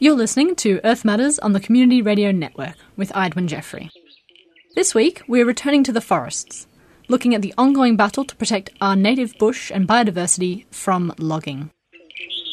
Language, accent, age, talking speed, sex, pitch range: English, Australian, 20-39, 165 wpm, female, 175-230 Hz